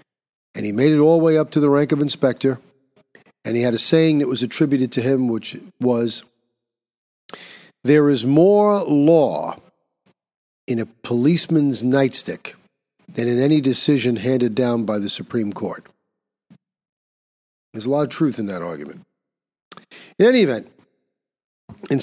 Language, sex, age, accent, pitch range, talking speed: English, male, 50-69, American, 120-150 Hz, 150 wpm